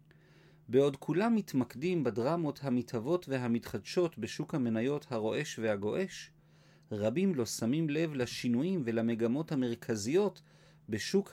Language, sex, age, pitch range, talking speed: Hebrew, male, 40-59, 120-170 Hz, 95 wpm